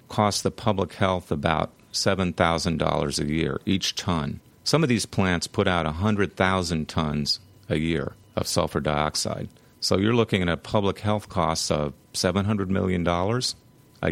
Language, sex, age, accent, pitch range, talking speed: English, male, 40-59, American, 85-110 Hz, 150 wpm